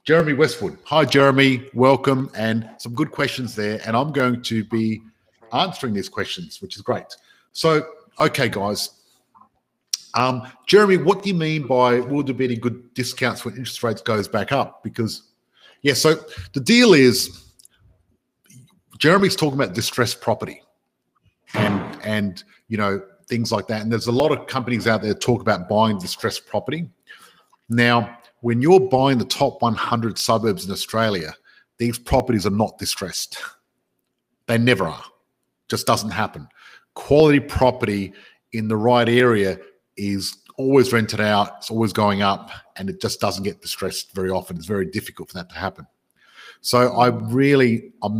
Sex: male